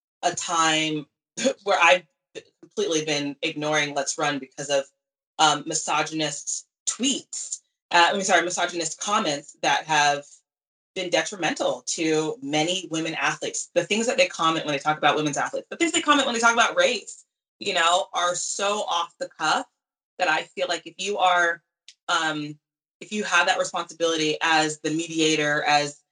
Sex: female